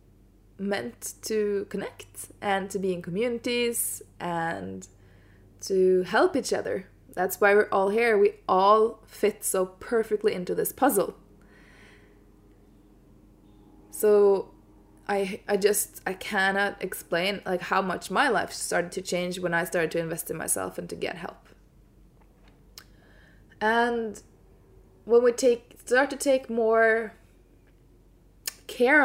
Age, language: 20-39, English